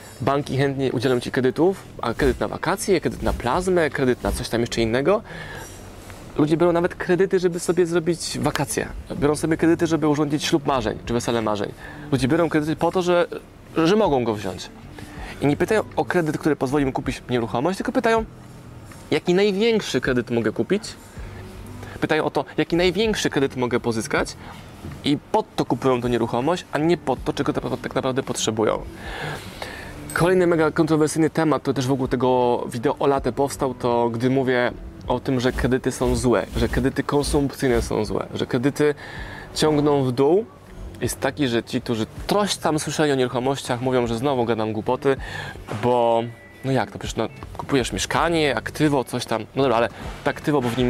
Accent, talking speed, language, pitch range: native, 180 wpm, Polish, 120-155 Hz